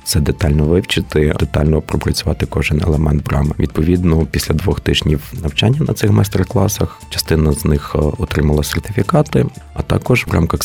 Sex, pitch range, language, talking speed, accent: male, 75-95 Hz, Ukrainian, 140 wpm, native